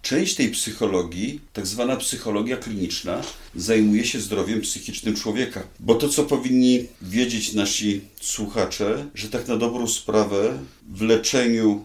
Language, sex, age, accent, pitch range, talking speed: Polish, male, 40-59, native, 100-115 Hz, 130 wpm